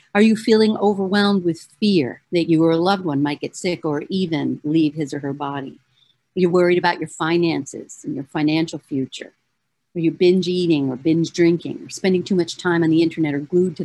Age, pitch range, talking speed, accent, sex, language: 50-69, 155-200 Hz, 215 wpm, American, female, English